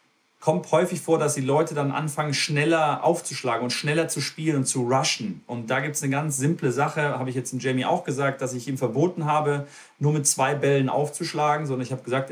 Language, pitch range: German, 125-150 Hz